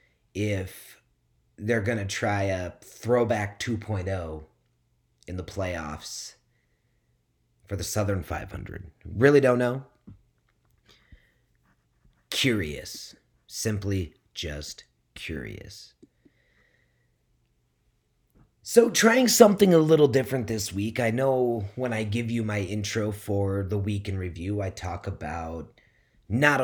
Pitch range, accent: 90-120 Hz, American